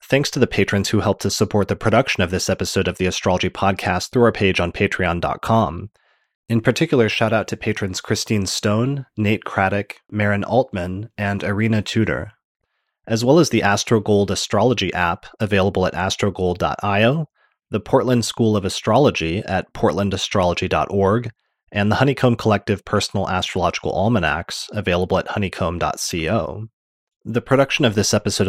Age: 30-49